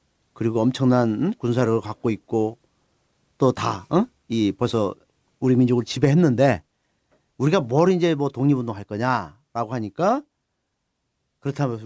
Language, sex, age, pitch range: Korean, male, 40-59, 115-190 Hz